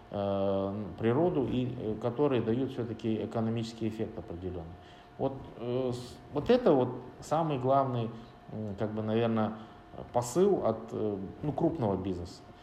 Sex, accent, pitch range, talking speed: male, native, 105-125 Hz, 105 wpm